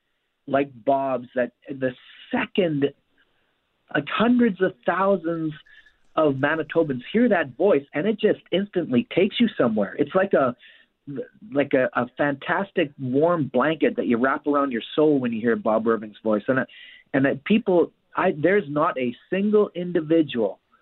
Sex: male